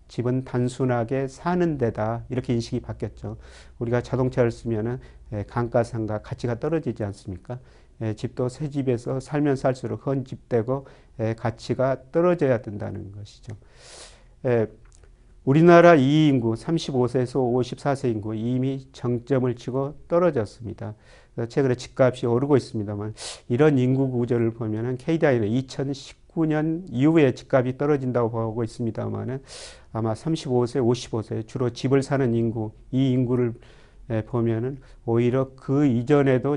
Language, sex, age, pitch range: Korean, male, 40-59, 115-135 Hz